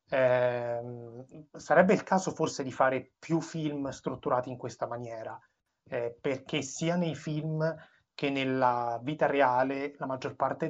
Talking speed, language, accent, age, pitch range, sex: 140 wpm, Italian, native, 30-49, 125-150 Hz, male